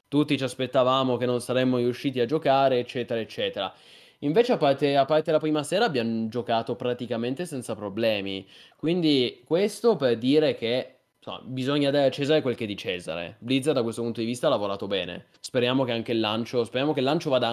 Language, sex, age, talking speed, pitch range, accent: Italian, male, 20-39, 200 wpm, 115-155 Hz, native